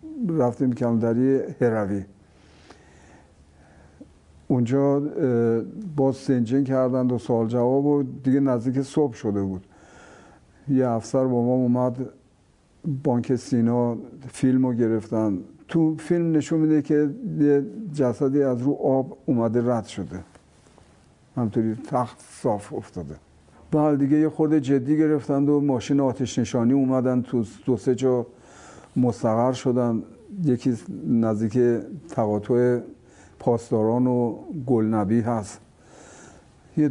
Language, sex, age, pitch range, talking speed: Arabic, male, 60-79, 115-140 Hz, 110 wpm